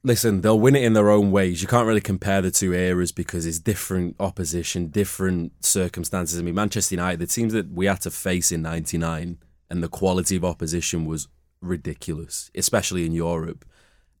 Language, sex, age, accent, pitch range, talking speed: English, male, 20-39, British, 85-105 Hz, 185 wpm